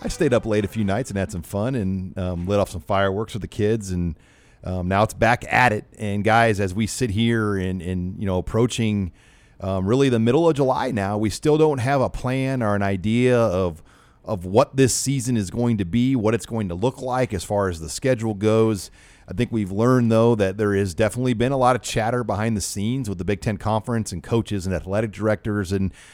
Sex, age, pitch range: male, 40-59, 100-120 Hz